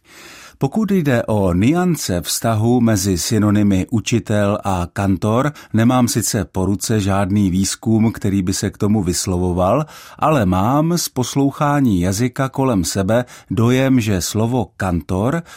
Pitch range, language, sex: 95-125 Hz, Czech, male